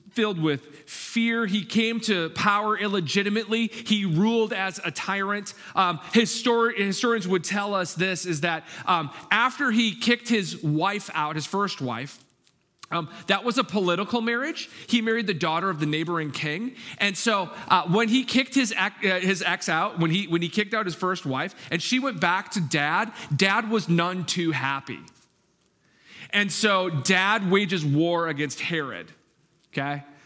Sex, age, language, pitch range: male, 40-59, English, 160-205 Hz